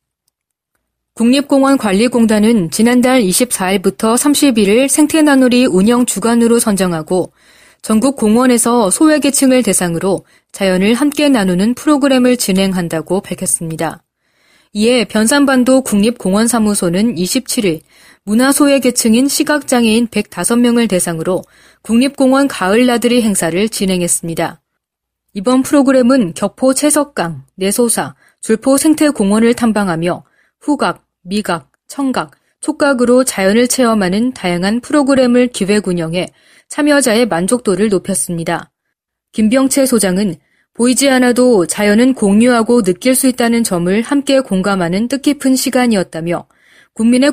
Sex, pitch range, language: female, 190-260 Hz, Korean